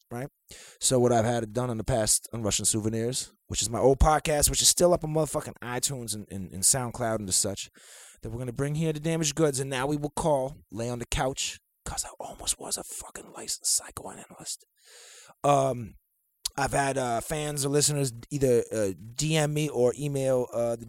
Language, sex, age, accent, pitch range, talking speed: English, male, 20-39, American, 110-150 Hz, 205 wpm